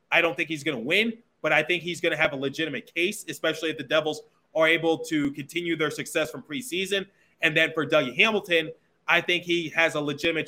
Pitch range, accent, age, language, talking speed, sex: 145-170 Hz, American, 20-39, English, 230 wpm, male